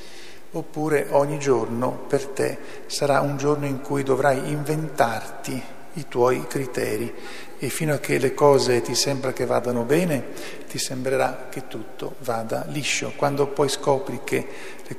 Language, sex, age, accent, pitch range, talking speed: Italian, male, 50-69, native, 120-145 Hz, 150 wpm